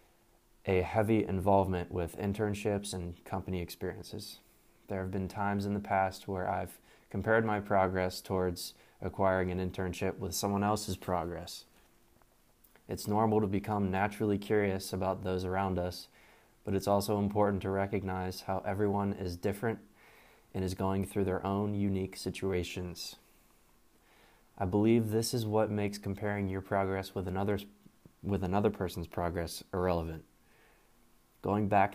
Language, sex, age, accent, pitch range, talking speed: English, male, 20-39, American, 95-105 Hz, 135 wpm